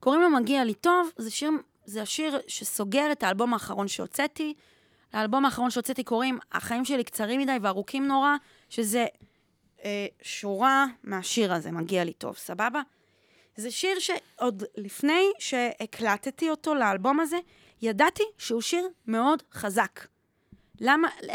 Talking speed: 130 wpm